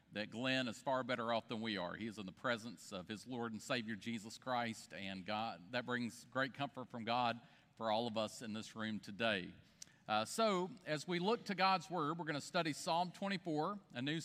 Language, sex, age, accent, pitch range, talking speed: English, male, 40-59, American, 125-170 Hz, 225 wpm